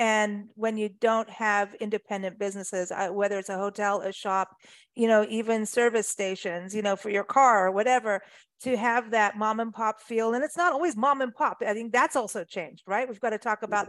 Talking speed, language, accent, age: 215 wpm, English, American, 40-59